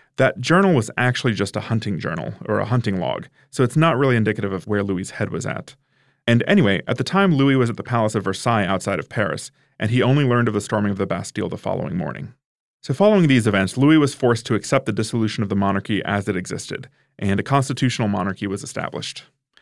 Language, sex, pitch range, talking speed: English, male, 105-135 Hz, 225 wpm